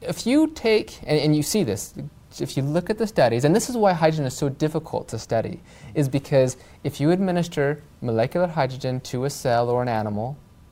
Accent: American